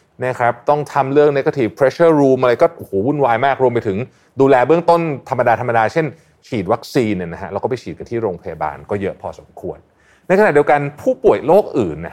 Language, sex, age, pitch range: Thai, male, 30-49, 115-165 Hz